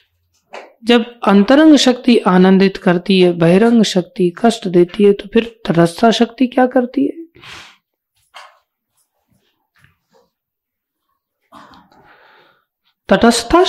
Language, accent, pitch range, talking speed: Hindi, native, 195-260 Hz, 85 wpm